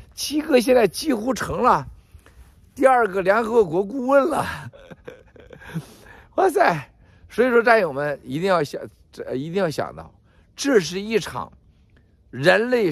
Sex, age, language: male, 50-69, Chinese